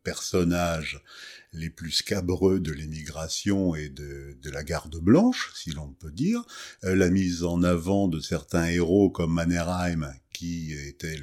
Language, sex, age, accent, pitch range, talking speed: French, male, 50-69, French, 80-100 Hz, 145 wpm